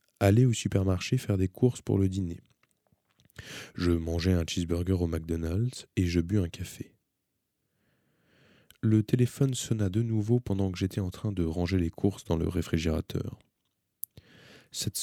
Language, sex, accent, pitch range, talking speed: French, male, French, 85-110 Hz, 150 wpm